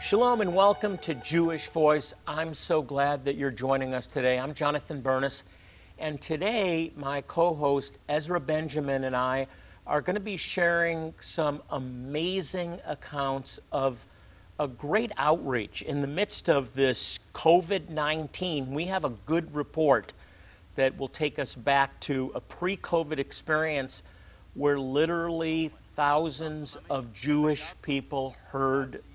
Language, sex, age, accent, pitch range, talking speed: English, male, 50-69, American, 125-155 Hz, 130 wpm